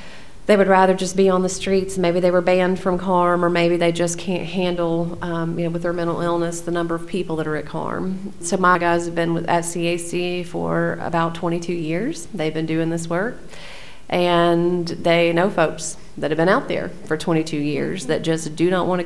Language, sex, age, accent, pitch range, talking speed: English, female, 40-59, American, 165-185 Hz, 215 wpm